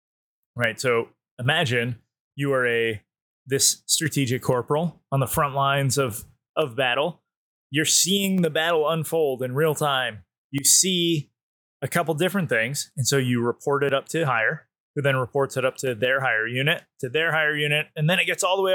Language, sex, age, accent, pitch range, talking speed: English, male, 20-39, American, 130-160 Hz, 185 wpm